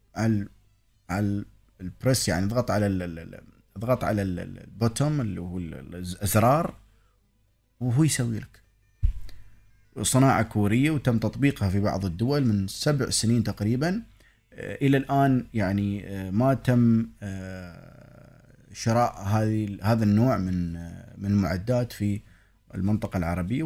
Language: Arabic